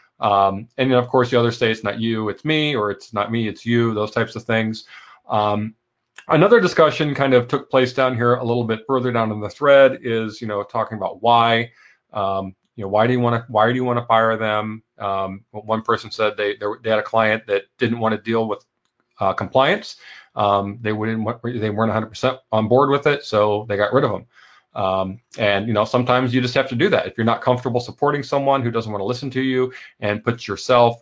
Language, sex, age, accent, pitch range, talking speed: English, male, 30-49, American, 110-130 Hz, 235 wpm